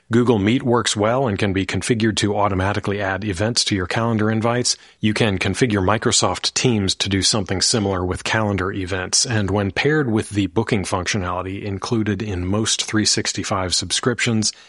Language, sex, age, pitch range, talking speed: English, male, 40-59, 95-120 Hz, 165 wpm